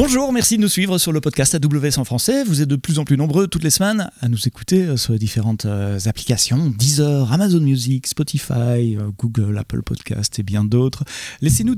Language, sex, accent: French, male, French